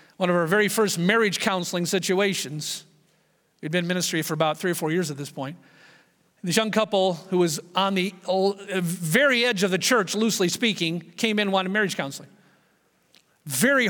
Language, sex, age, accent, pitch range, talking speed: English, male, 40-59, American, 180-235 Hz, 180 wpm